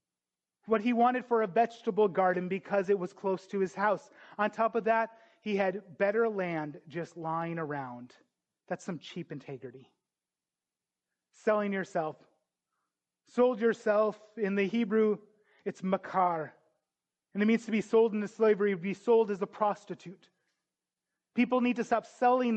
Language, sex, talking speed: English, male, 150 wpm